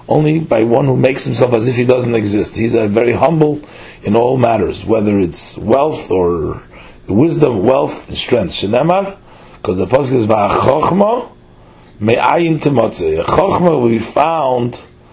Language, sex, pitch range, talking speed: English, male, 100-125 Hz, 145 wpm